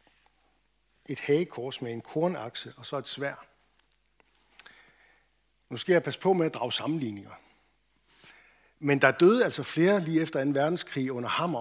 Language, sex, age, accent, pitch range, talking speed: Danish, male, 60-79, native, 130-175 Hz, 150 wpm